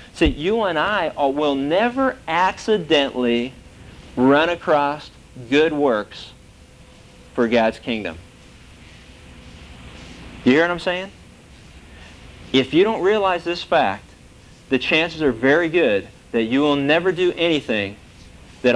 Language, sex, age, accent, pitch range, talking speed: English, male, 40-59, American, 110-165 Hz, 120 wpm